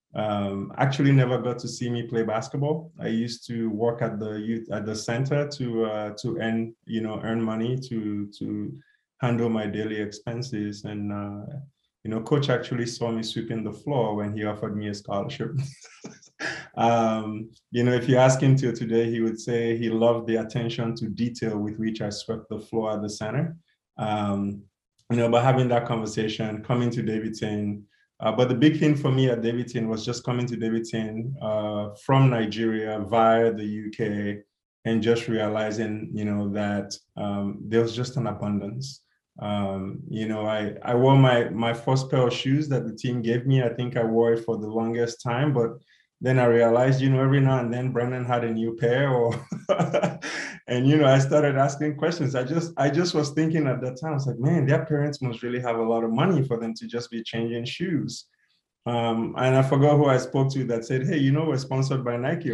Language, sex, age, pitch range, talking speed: English, male, 20-39, 110-130 Hz, 205 wpm